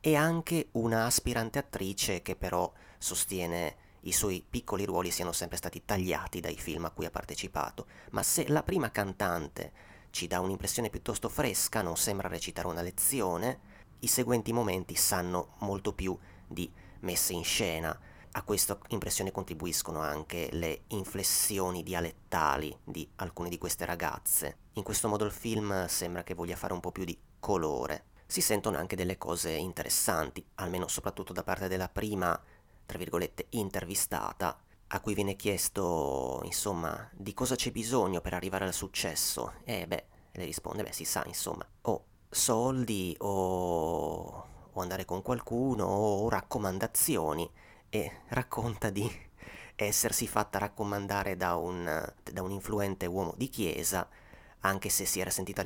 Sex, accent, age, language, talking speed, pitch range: male, native, 30-49, Italian, 150 wpm, 90-105 Hz